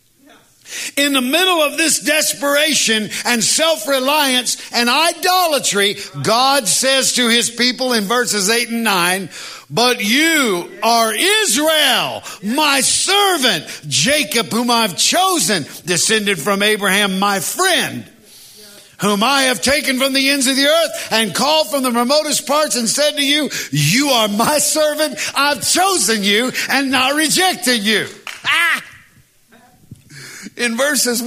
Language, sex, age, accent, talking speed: English, male, 50-69, American, 130 wpm